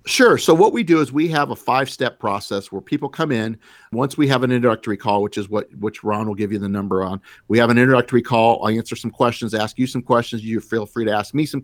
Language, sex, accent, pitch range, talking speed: English, male, American, 105-130 Hz, 270 wpm